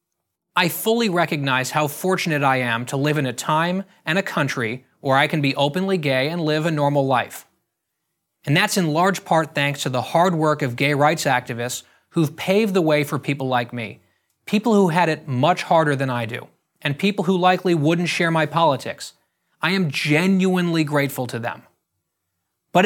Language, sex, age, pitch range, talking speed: English, male, 30-49, 145-185 Hz, 185 wpm